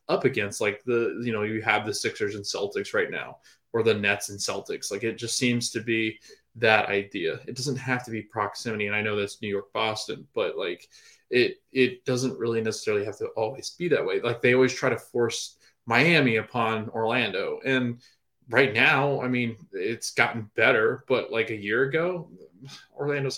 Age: 20-39